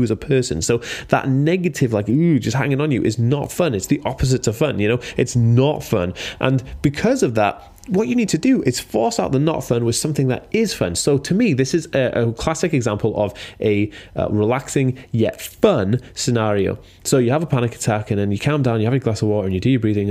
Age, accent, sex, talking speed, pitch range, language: 20-39, British, male, 250 wpm, 105-140 Hz, English